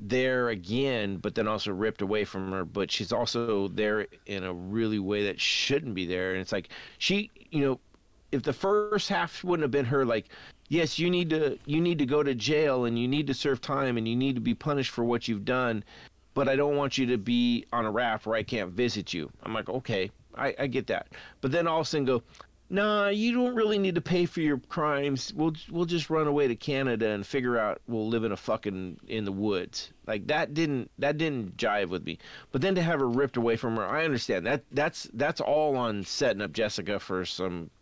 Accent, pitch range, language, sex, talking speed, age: American, 105-145 Hz, English, male, 235 wpm, 40-59